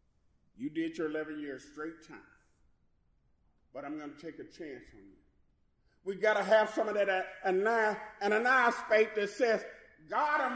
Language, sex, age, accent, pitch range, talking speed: English, male, 40-59, American, 180-295 Hz, 170 wpm